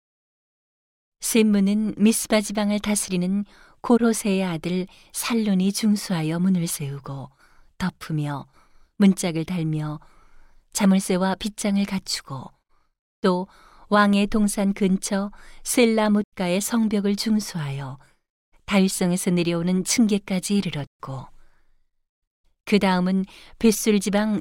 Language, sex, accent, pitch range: Korean, female, native, 175-210 Hz